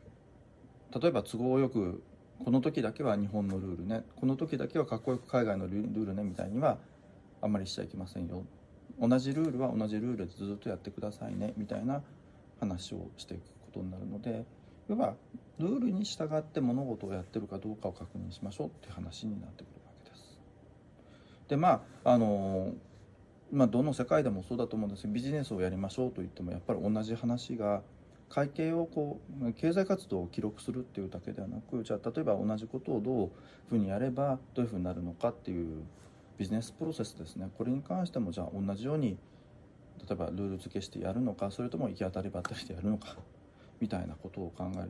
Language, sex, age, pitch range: Japanese, male, 40-59, 95-125 Hz